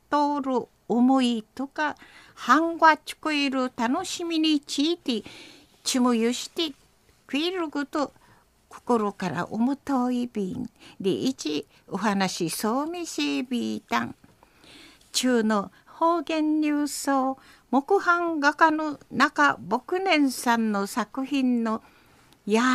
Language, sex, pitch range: Japanese, female, 245-325 Hz